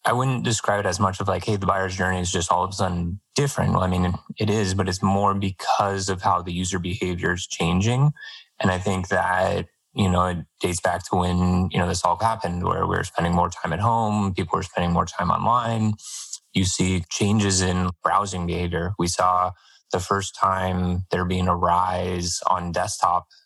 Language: English